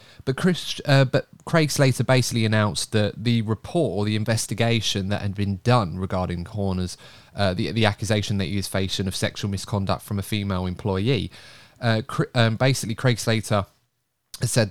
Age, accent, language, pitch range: 20-39, British, English, 105-125 Hz